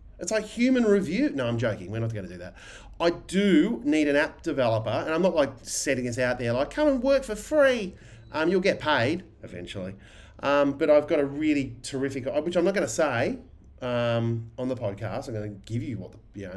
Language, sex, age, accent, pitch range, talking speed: English, male, 30-49, Australian, 105-165 Hz, 215 wpm